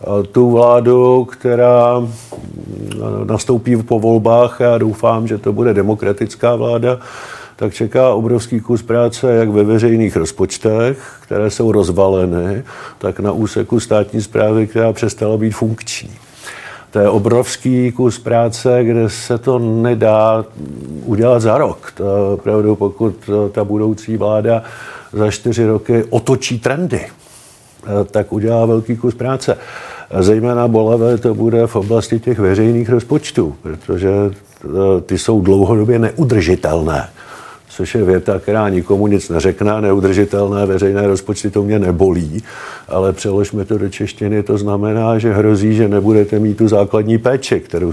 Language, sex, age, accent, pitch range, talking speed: Czech, male, 50-69, native, 100-120 Hz, 130 wpm